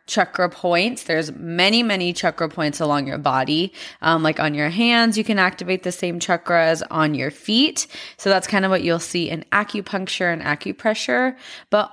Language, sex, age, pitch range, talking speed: English, female, 20-39, 165-210 Hz, 180 wpm